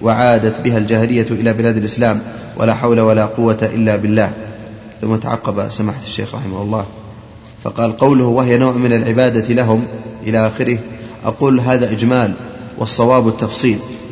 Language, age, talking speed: Arabic, 30-49, 135 wpm